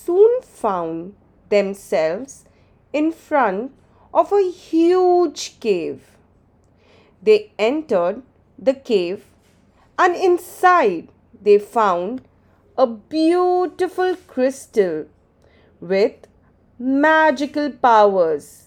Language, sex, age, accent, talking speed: English, female, 30-49, Indian, 75 wpm